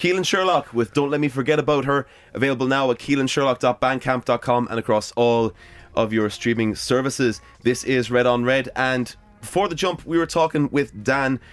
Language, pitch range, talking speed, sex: English, 110-140 Hz, 175 wpm, male